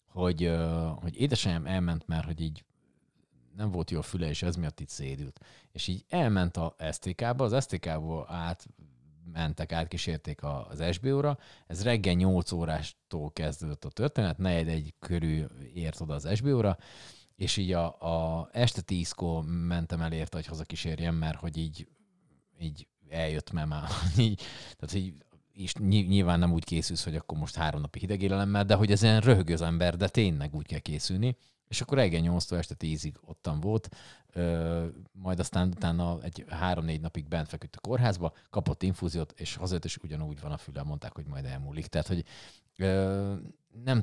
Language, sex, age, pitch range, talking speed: Hungarian, male, 30-49, 80-95 Hz, 165 wpm